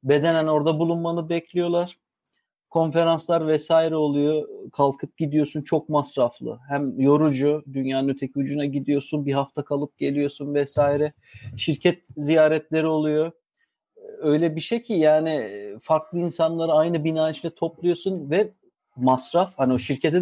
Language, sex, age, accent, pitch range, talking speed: Turkish, male, 40-59, native, 145-175 Hz, 120 wpm